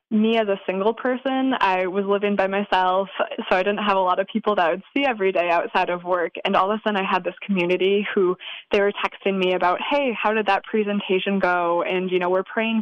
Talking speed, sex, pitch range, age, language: 250 wpm, female, 185-210 Hz, 20-39, English